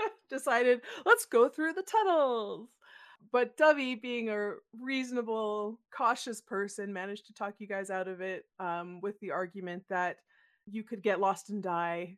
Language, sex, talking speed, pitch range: English, female, 160 wpm, 190-250 Hz